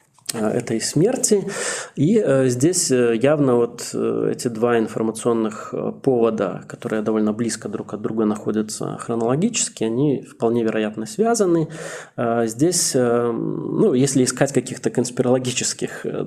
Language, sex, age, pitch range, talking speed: Russian, male, 20-39, 115-135 Hz, 105 wpm